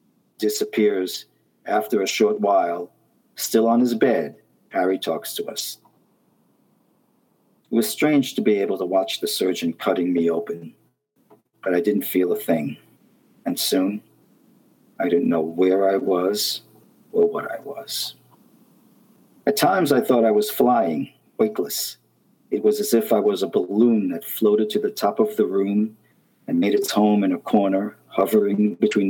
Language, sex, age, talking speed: English, male, 50-69, 160 wpm